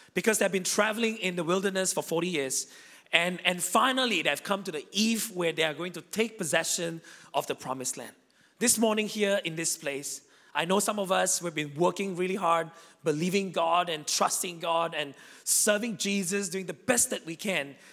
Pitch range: 195-245 Hz